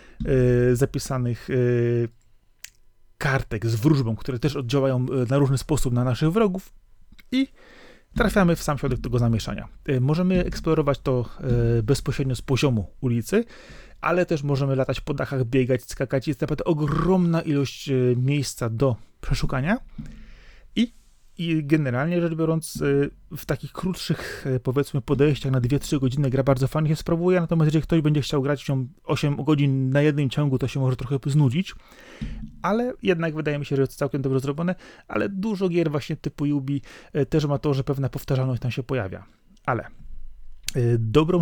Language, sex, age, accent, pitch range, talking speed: Polish, male, 30-49, native, 125-155 Hz, 150 wpm